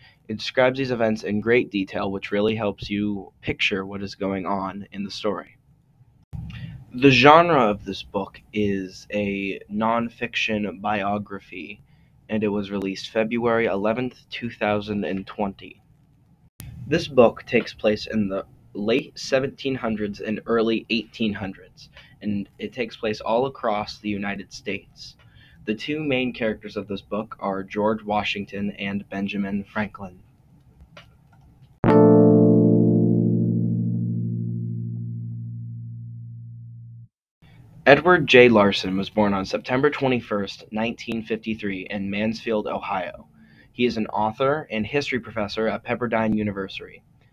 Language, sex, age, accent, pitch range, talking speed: English, male, 20-39, American, 100-115 Hz, 115 wpm